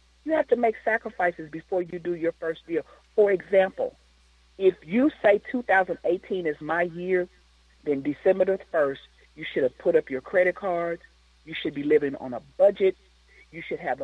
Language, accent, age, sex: English, American, 40-59, female